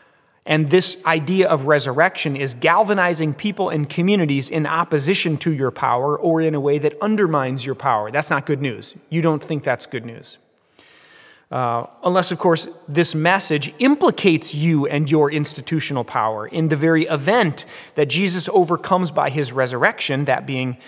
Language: English